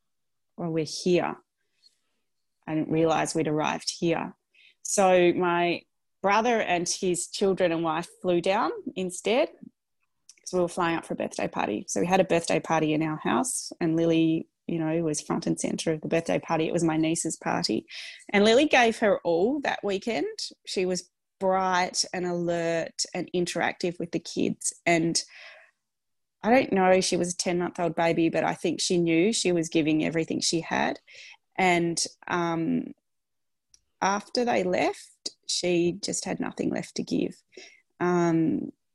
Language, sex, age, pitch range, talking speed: English, female, 20-39, 165-190 Hz, 165 wpm